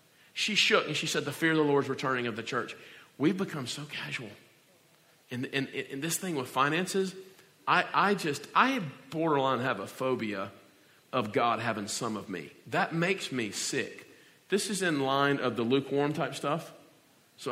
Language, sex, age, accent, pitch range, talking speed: English, male, 40-59, American, 115-140 Hz, 180 wpm